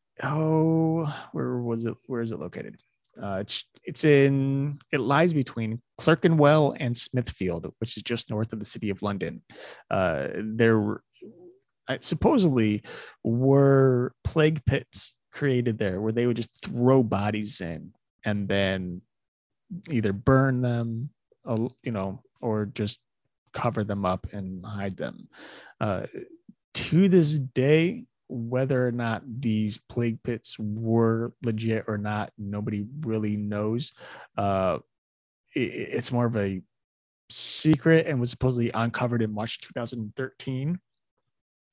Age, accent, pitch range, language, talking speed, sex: 30-49, American, 110-135 Hz, English, 130 wpm, male